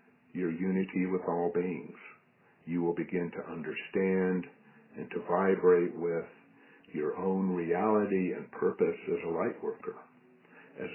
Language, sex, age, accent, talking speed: English, male, 60-79, American, 130 wpm